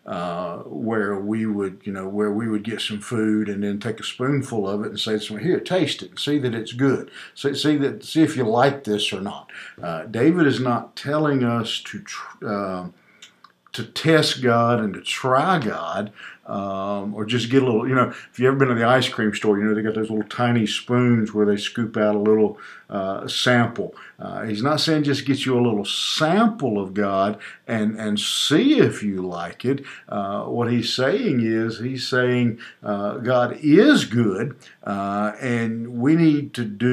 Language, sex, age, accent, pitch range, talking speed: English, male, 50-69, American, 105-135 Hz, 200 wpm